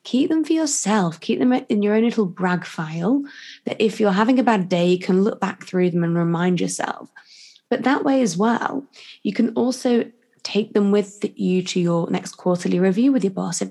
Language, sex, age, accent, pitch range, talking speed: English, female, 20-39, British, 180-230 Hz, 215 wpm